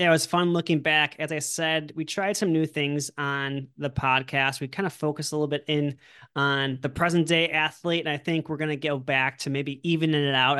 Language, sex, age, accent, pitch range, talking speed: English, male, 30-49, American, 135-155 Hz, 245 wpm